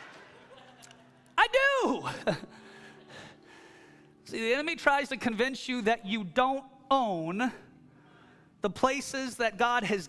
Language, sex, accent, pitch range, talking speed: English, male, American, 195-285 Hz, 105 wpm